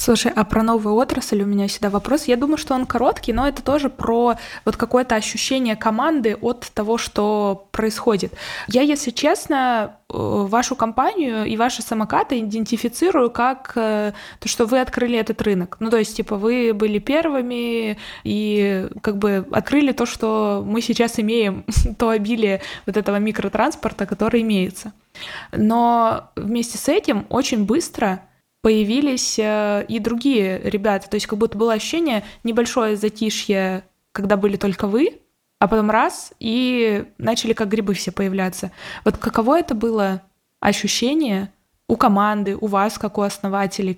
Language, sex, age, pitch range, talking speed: Russian, female, 20-39, 205-235 Hz, 145 wpm